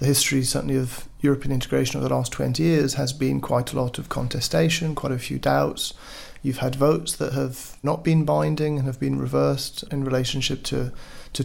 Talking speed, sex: 200 wpm, male